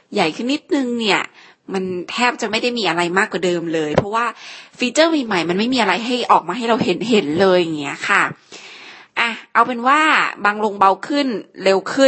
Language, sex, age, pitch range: Thai, female, 20-39, 180-230 Hz